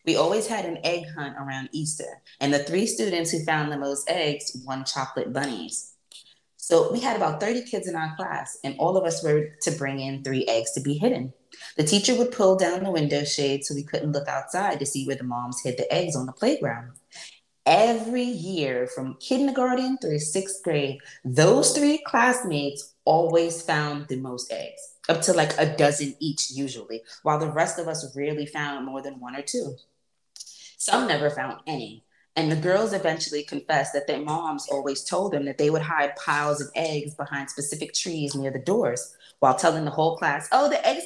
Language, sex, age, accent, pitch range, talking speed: English, female, 20-39, American, 140-170 Hz, 200 wpm